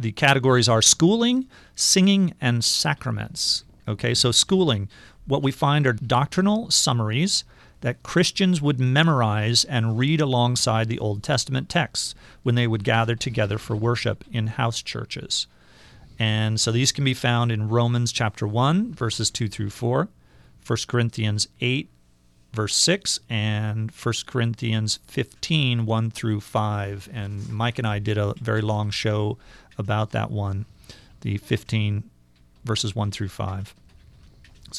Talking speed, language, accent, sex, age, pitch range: 140 wpm, English, American, male, 40-59, 105-125 Hz